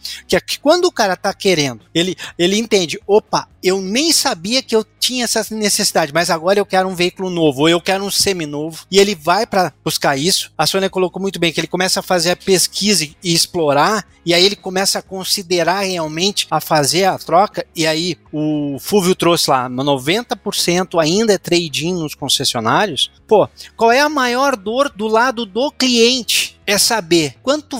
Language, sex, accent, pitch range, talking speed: Portuguese, male, Brazilian, 165-225 Hz, 190 wpm